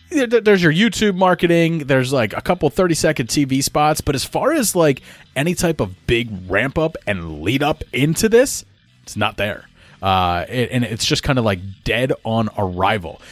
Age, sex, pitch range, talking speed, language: 30-49, male, 105-155 Hz, 190 wpm, English